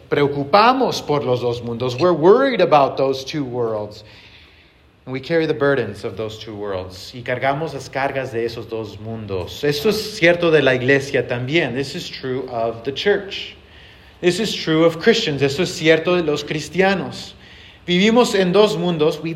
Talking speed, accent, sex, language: 175 wpm, Mexican, male, English